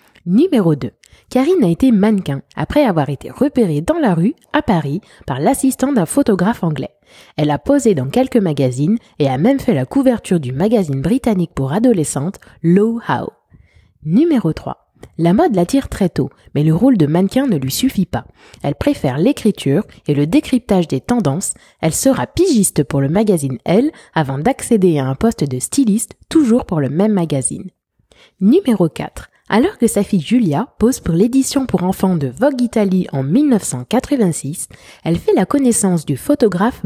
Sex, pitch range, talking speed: female, 155-250 Hz, 170 wpm